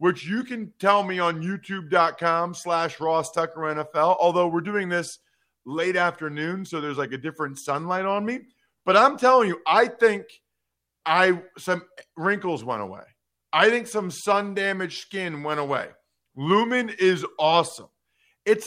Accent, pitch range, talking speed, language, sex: American, 150-205 Hz, 155 wpm, English, male